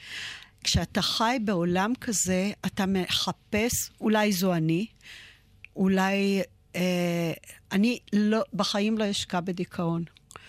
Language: Hebrew